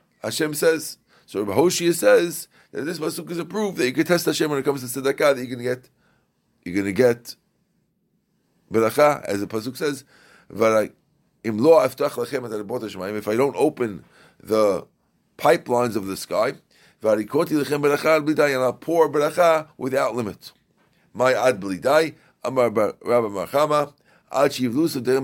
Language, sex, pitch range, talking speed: English, male, 110-150 Hz, 150 wpm